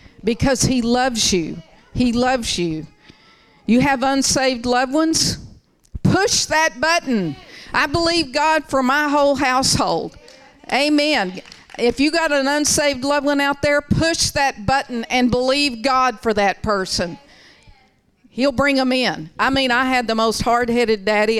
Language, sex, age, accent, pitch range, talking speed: English, female, 50-69, American, 180-255 Hz, 150 wpm